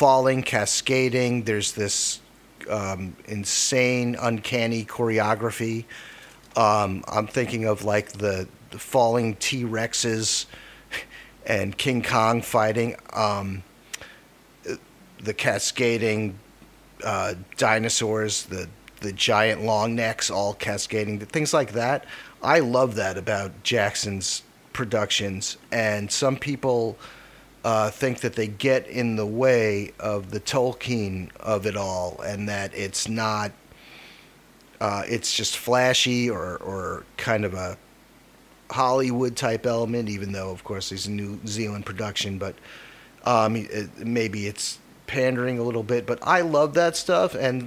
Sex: male